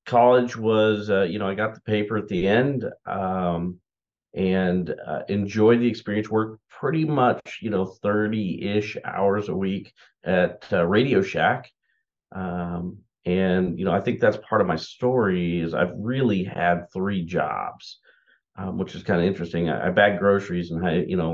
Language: English